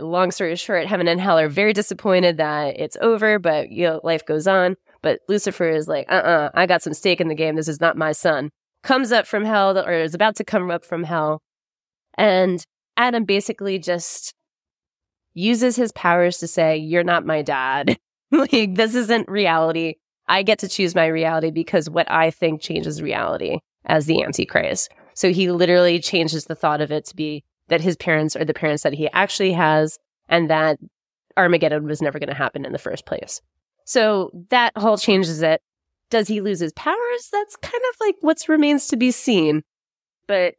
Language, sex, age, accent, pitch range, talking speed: English, female, 20-39, American, 160-210 Hz, 195 wpm